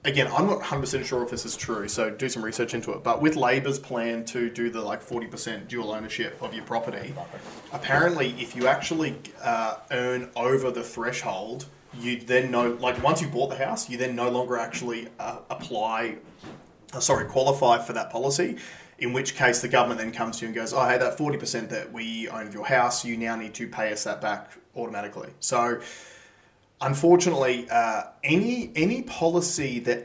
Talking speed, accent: 195 wpm, Australian